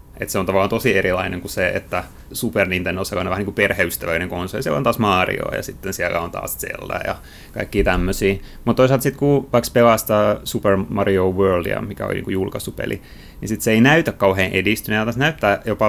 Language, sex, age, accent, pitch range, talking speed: Finnish, male, 30-49, native, 90-105 Hz, 200 wpm